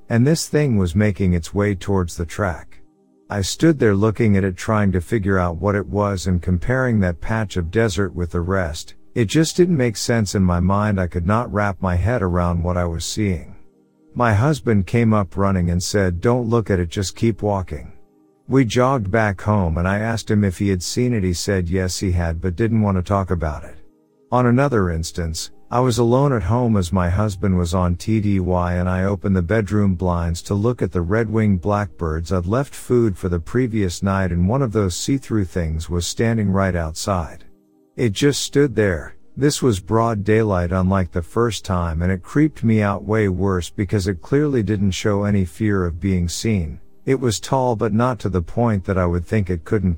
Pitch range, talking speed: 90-115 Hz, 210 wpm